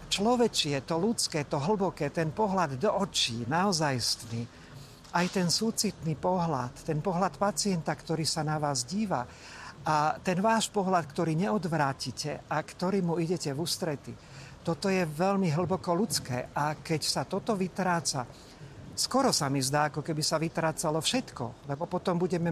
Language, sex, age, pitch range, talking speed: Slovak, male, 50-69, 145-185 Hz, 145 wpm